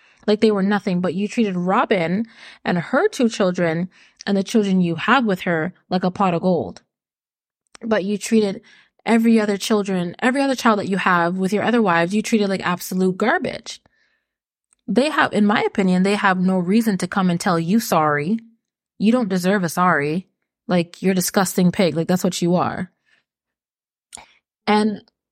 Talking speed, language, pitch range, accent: 180 wpm, English, 185-240 Hz, American